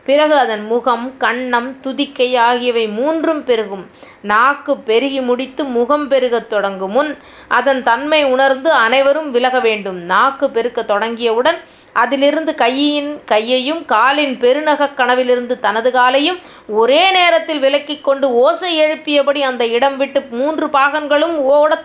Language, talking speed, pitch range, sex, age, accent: Tamil, 120 wpm, 230-280 Hz, female, 30-49, native